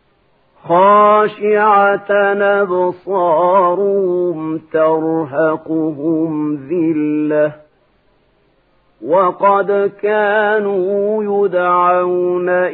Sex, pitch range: male, 180-200 Hz